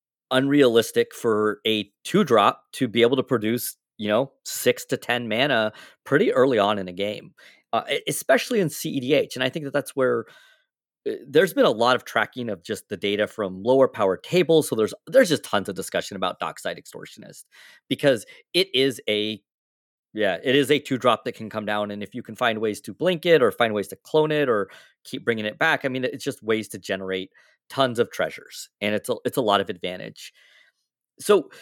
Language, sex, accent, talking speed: English, male, American, 205 wpm